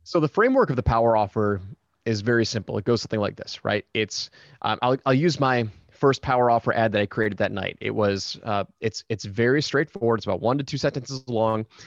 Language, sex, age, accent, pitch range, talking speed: English, male, 30-49, American, 105-135 Hz, 230 wpm